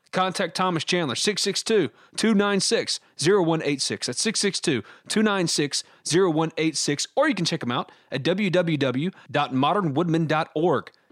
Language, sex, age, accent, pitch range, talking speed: English, male, 30-49, American, 135-170 Hz, 75 wpm